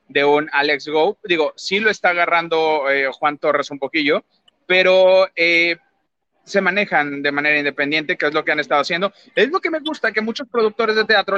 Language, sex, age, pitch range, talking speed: Spanish, male, 30-49, 145-205 Hz, 200 wpm